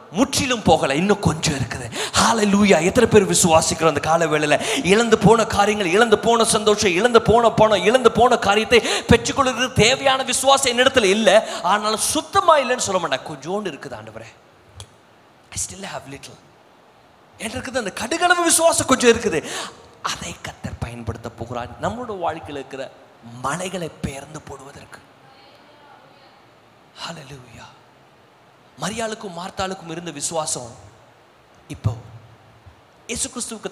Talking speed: 30 wpm